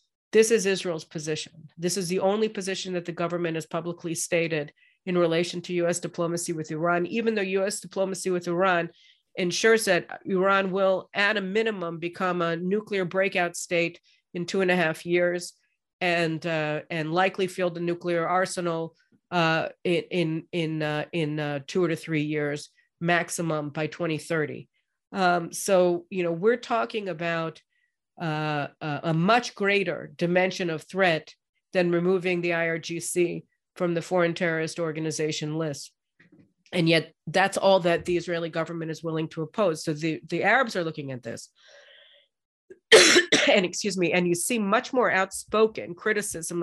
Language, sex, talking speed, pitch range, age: English, female, 155 wpm, 165-195 Hz, 50-69